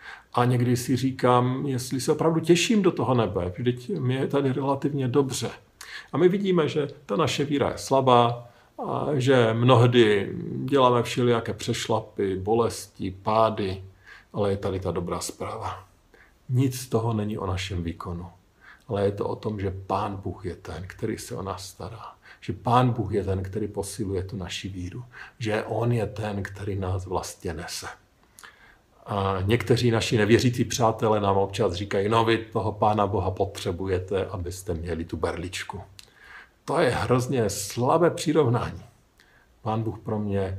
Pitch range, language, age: 95-120 Hz, Slovak, 50-69